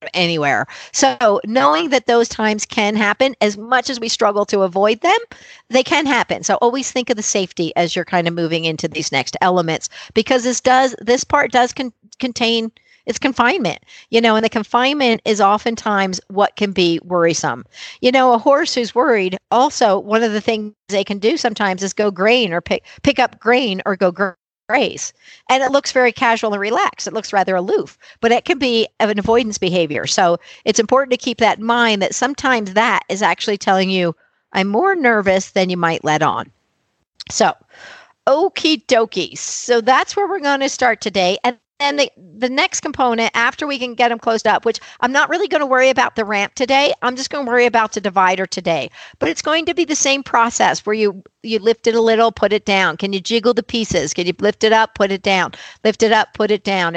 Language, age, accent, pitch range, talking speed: English, 50-69, American, 195-255 Hz, 215 wpm